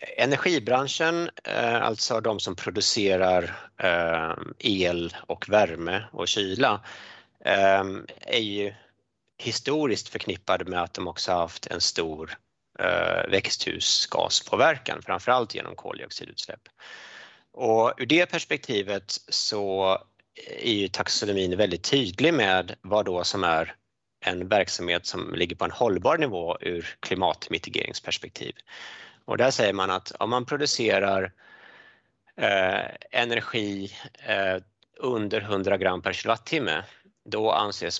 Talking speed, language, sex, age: 105 wpm, Swedish, male, 30-49